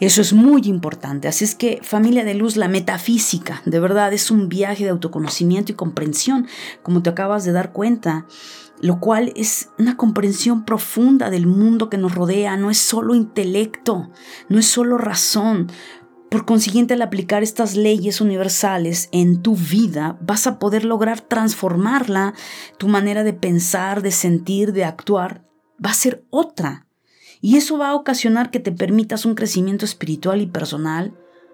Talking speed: 165 wpm